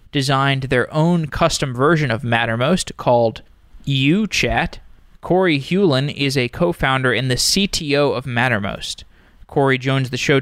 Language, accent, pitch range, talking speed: English, American, 125-160 Hz, 130 wpm